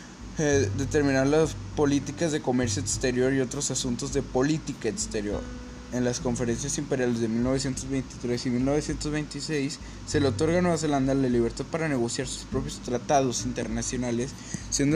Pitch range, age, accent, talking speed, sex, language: 115-135 Hz, 10-29, Mexican, 145 wpm, male, Spanish